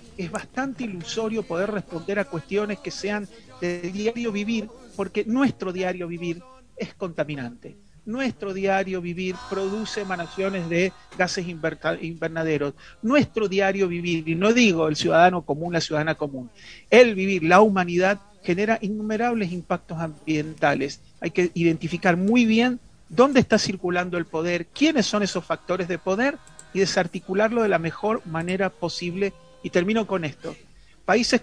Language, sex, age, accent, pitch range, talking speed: Spanish, male, 40-59, Argentinian, 165-210 Hz, 140 wpm